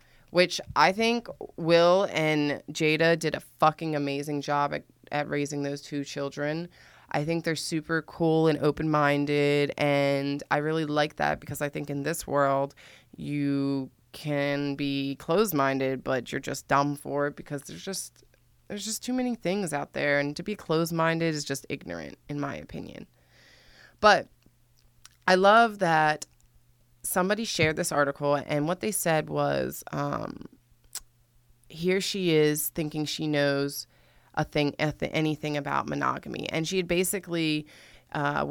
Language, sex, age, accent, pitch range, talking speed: English, female, 20-39, American, 140-165 Hz, 150 wpm